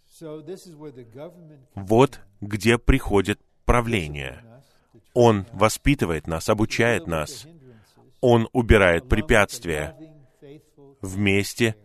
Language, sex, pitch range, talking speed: Russian, male, 100-125 Hz, 65 wpm